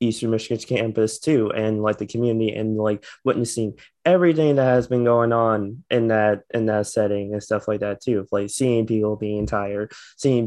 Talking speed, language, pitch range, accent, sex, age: 190 wpm, English, 100-120 Hz, American, male, 20-39